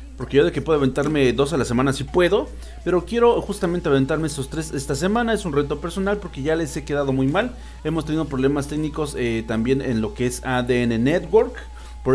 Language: English